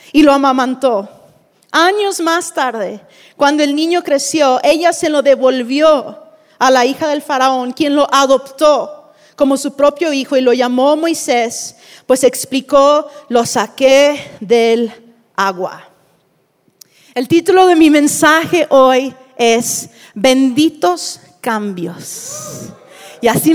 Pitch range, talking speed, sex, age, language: 260-310 Hz, 120 wpm, female, 40-59, Spanish